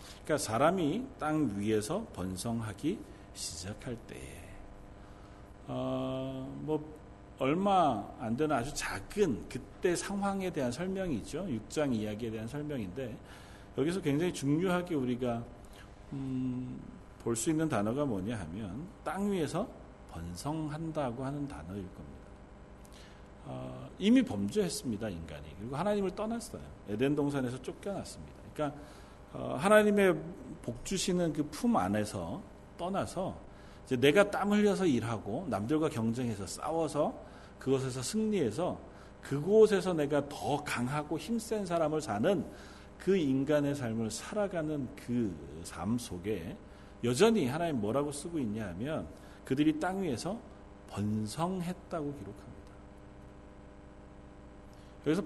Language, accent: Korean, native